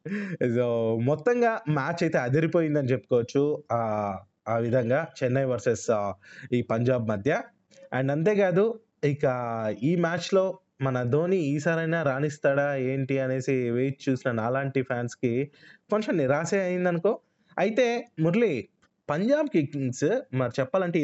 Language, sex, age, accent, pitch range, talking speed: Telugu, male, 20-39, native, 130-185 Hz, 105 wpm